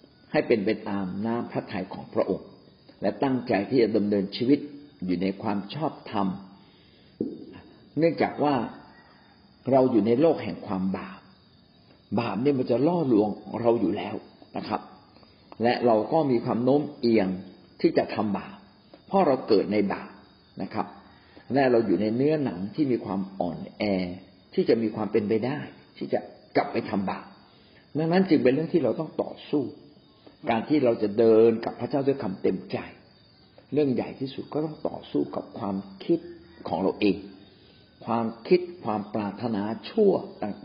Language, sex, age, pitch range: Thai, male, 50-69, 100-135 Hz